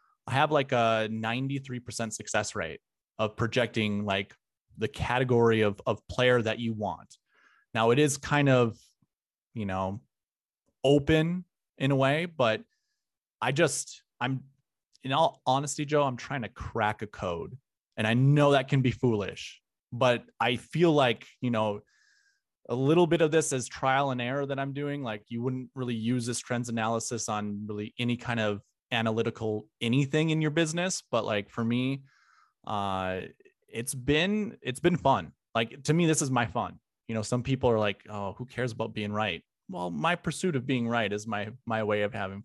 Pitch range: 110-135 Hz